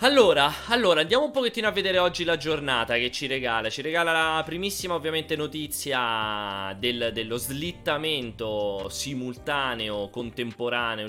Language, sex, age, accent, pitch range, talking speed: Italian, male, 20-39, native, 110-135 Hz, 130 wpm